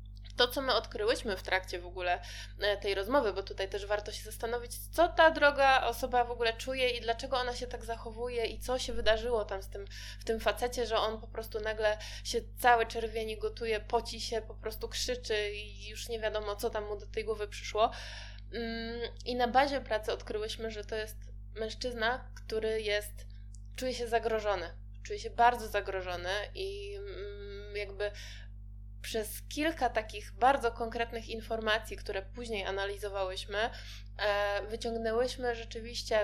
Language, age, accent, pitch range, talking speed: Polish, 20-39, native, 205-245 Hz, 155 wpm